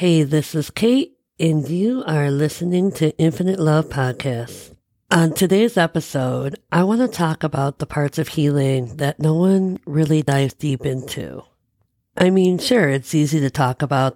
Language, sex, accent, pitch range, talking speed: English, female, American, 130-165 Hz, 165 wpm